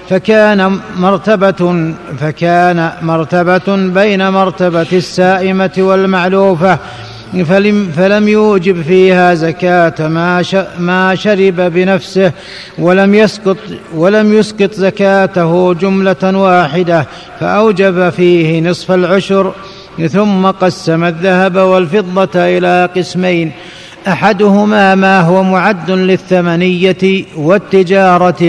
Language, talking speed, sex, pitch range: Arabic, 85 wpm, male, 175-195 Hz